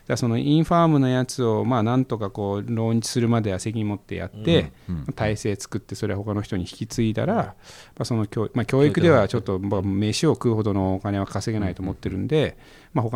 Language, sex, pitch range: Japanese, male, 95-120 Hz